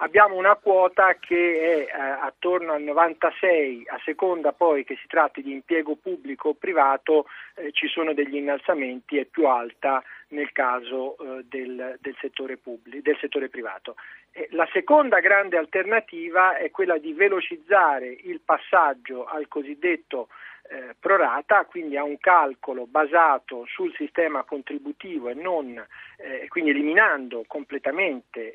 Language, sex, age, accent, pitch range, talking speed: Italian, male, 40-59, native, 140-180 Hz, 135 wpm